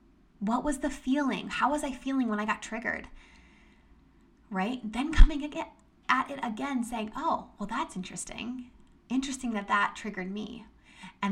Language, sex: English, female